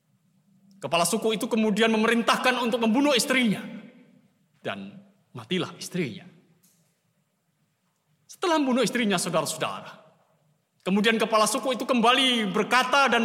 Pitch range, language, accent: 165-225 Hz, Indonesian, native